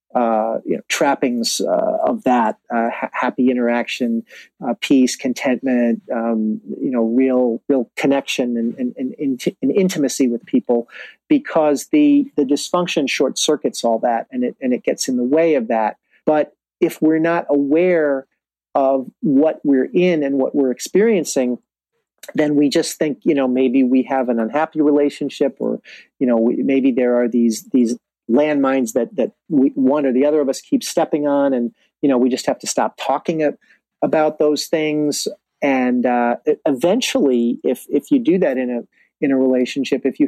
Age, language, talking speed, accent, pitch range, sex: 40-59, English, 180 wpm, American, 125-160 Hz, male